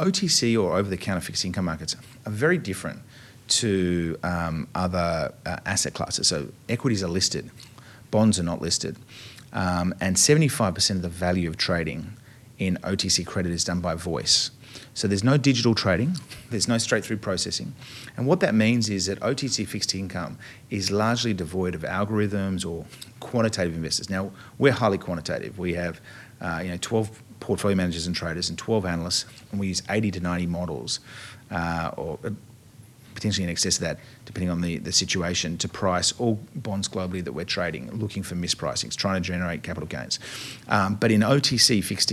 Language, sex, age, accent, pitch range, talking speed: English, male, 30-49, Australian, 90-120 Hz, 175 wpm